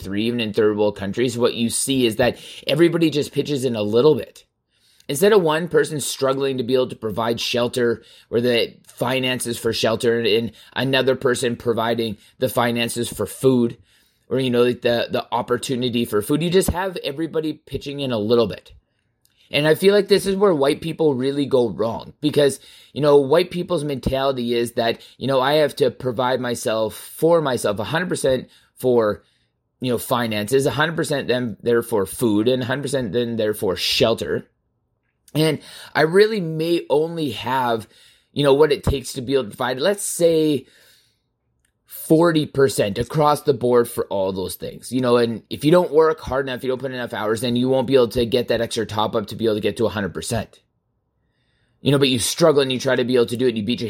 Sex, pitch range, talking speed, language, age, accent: male, 115-145 Hz, 200 wpm, English, 20-39, American